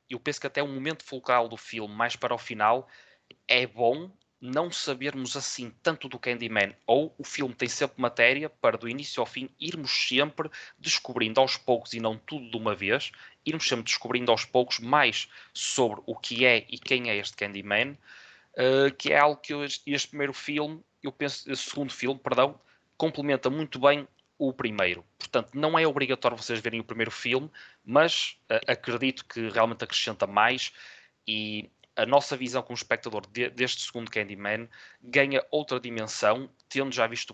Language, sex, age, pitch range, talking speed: Portuguese, male, 20-39, 115-140 Hz, 170 wpm